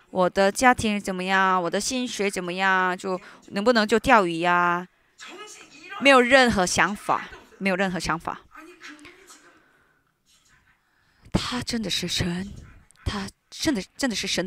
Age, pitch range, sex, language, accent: 20-39, 190-265 Hz, female, Chinese, native